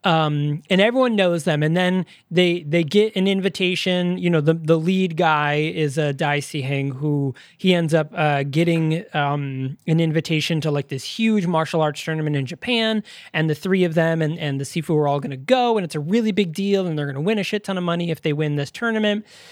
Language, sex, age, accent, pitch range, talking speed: English, male, 20-39, American, 150-190 Hz, 235 wpm